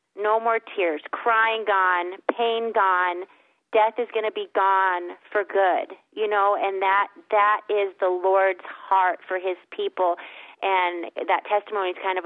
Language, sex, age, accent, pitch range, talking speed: English, female, 30-49, American, 185-215 Hz, 160 wpm